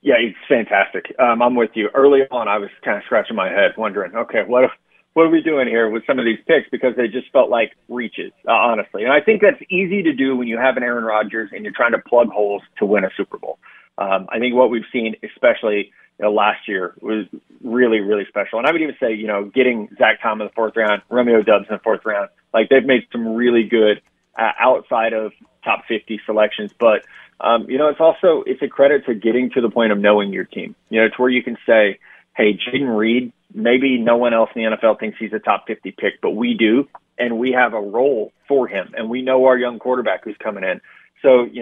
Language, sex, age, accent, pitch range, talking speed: English, male, 30-49, American, 110-130 Hz, 240 wpm